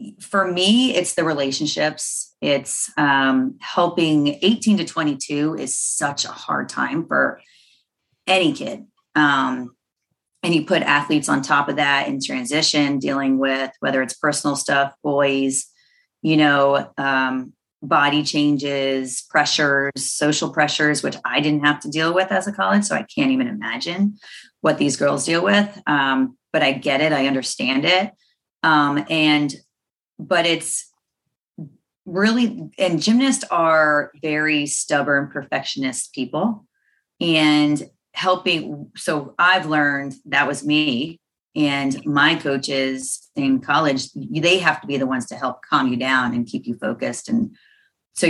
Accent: American